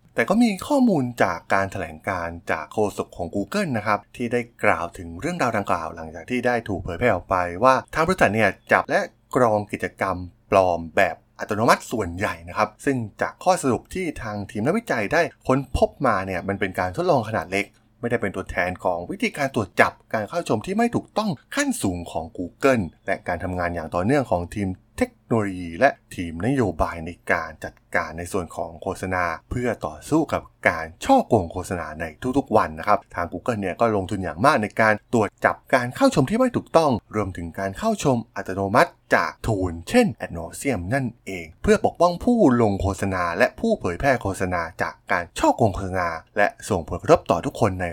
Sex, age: male, 20-39